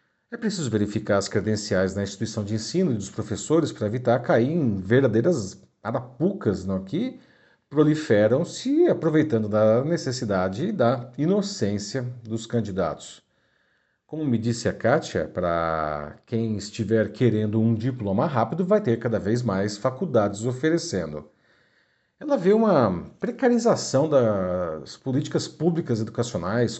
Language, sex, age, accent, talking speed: Portuguese, male, 40-59, Brazilian, 125 wpm